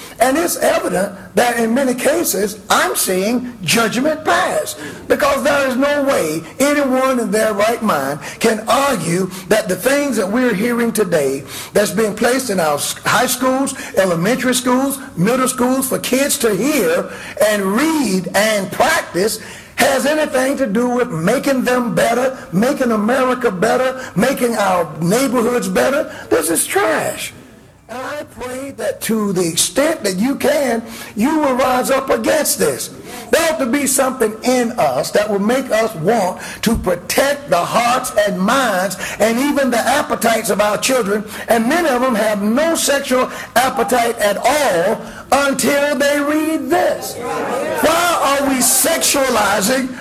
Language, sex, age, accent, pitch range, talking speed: English, male, 50-69, American, 210-275 Hz, 150 wpm